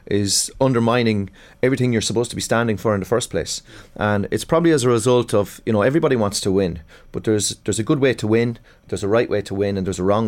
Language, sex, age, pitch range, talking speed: English, male, 30-49, 100-120 Hz, 255 wpm